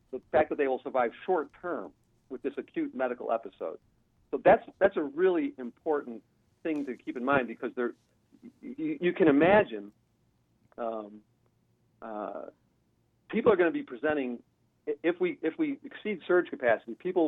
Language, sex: English, male